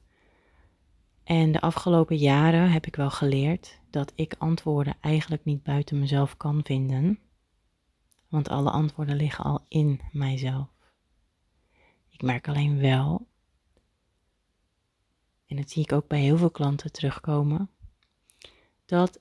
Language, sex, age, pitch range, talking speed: Dutch, female, 30-49, 130-160 Hz, 120 wpm